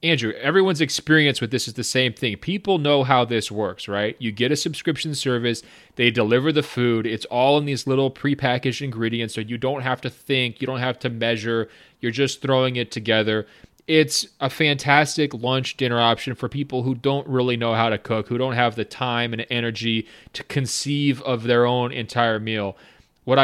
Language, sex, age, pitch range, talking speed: English, male, 30-49, 115-135 Hz, 195 wpm